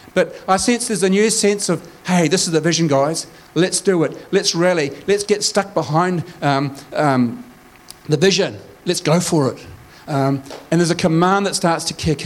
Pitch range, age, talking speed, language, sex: 160-195 Hz, 40-59, 195 wpm, English, male